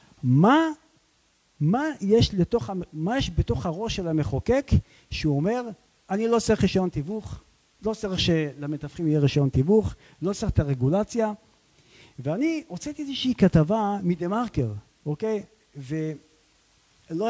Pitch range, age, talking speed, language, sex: 145-205 Hz, 50-69, 110 wpm, Hebrew, male